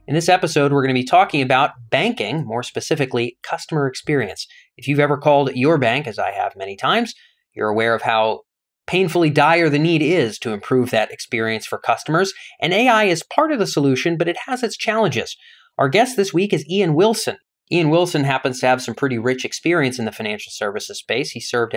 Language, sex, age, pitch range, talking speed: English, male, 30-49, 115-185 Hz, 205 wpm